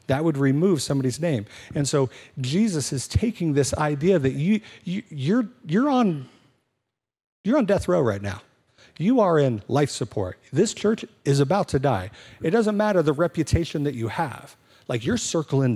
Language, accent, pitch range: English, American, 120-155 Hz